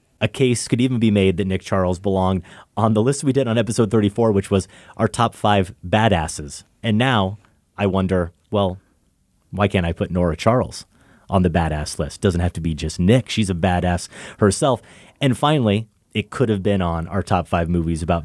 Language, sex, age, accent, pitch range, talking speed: English, male, 30-49, American, 90-115 Hz, 200 wpm